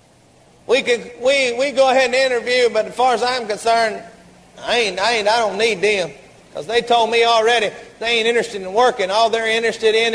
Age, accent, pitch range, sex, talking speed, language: 40-59, American, 230-285 Hz, male, 215 wpm, English